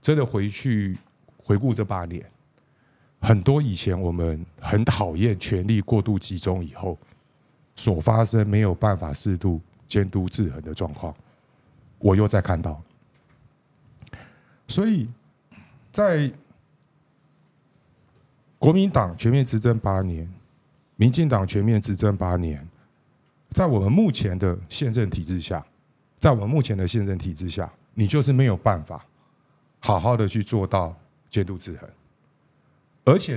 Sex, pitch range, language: male, 95-135 Hz, Chinese